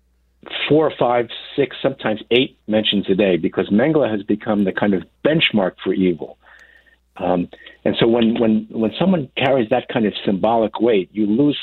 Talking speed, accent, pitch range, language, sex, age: 170 wpm, American, 95-115 Hz, English, male, 60-79